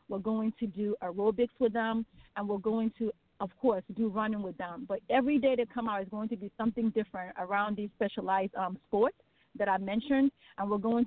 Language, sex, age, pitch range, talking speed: English, female, 30-49, 200-230 Hz, 215 wpm